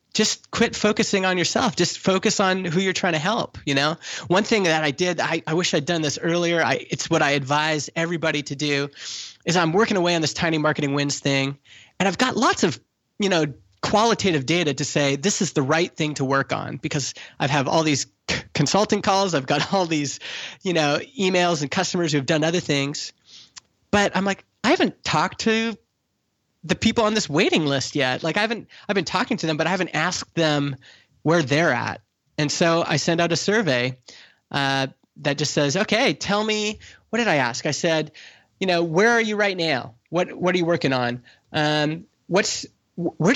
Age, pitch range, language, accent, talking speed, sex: 20-39, 145-185 Hz, English, American, 210 wpm, male